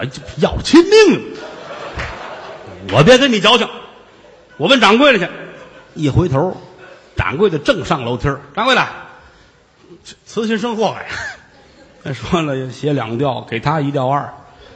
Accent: native